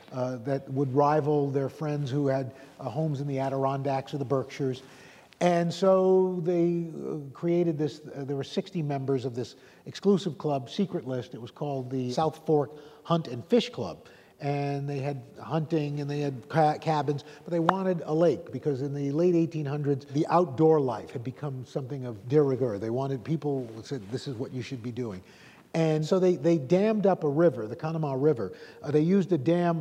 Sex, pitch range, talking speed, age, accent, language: male, 140-170 Hz, 195 wpm, 50-69, American, English